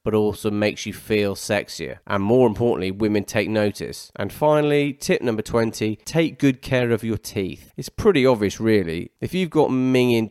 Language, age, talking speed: English, 30-49, 180 wpm